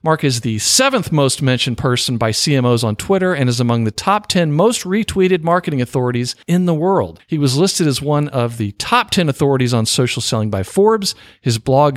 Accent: American